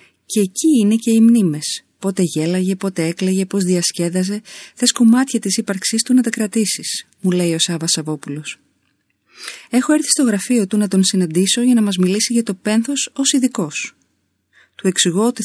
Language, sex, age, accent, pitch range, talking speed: Greek, female, 30-49, native, 170-230 Hz, 170 wpm